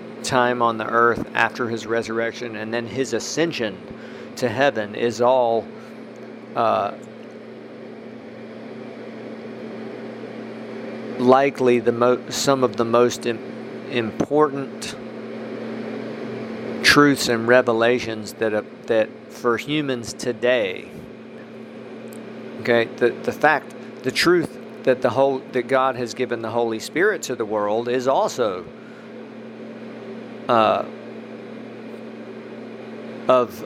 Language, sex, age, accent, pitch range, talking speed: English, male, 50-69, American, 115-130 Hz, 100 wpm